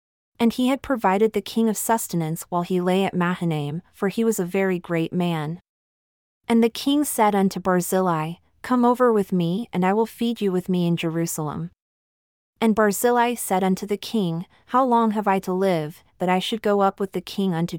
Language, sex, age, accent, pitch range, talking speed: English, female, 30-49, American, 170-220 Hz, 200 wpm